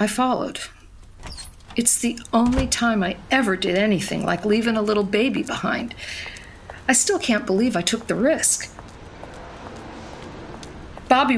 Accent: American